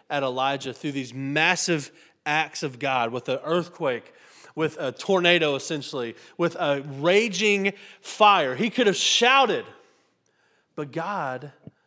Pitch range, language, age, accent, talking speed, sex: 135-210 Hz, English, 30-49, American, 125 wpm, male